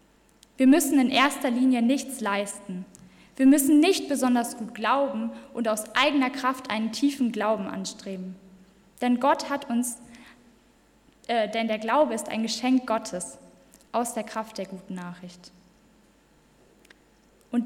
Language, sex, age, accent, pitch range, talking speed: German, female, 10-29, German, 210-265 Hz, 135 wpm